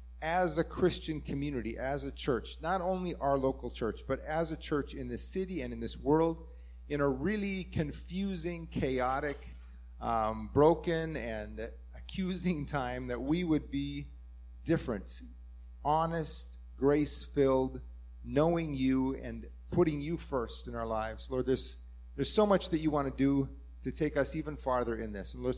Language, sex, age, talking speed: English, male, 30-49, 160 wpm